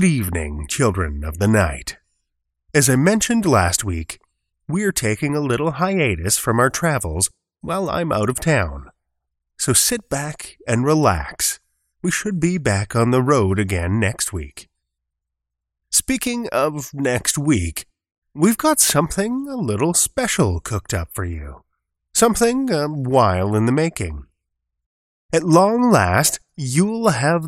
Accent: American